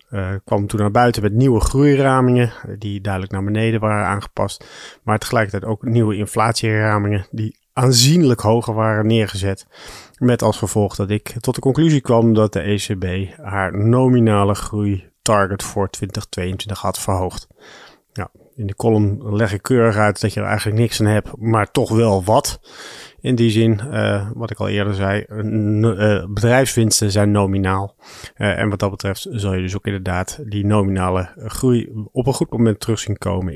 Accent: Dutch